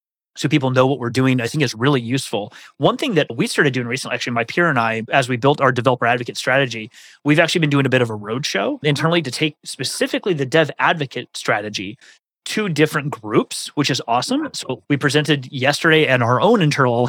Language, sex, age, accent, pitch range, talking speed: English, male, 30-49, American, 125-150 Hz, 220 wpm